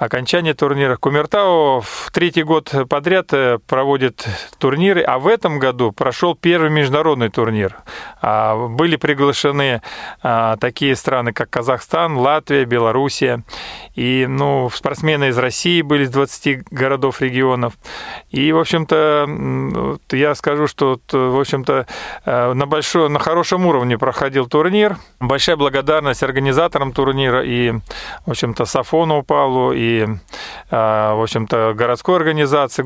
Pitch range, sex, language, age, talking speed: 125-155 Hz, male, Russian, 40-59, 115 wpm